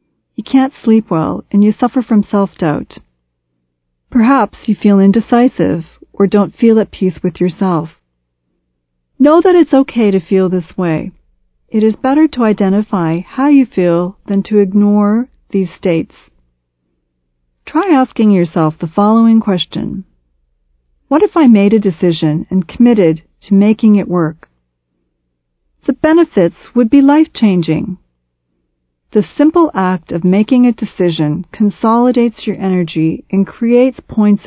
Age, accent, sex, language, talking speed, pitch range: 40-59, American, female, English, 140 wpm, 160-220 Hz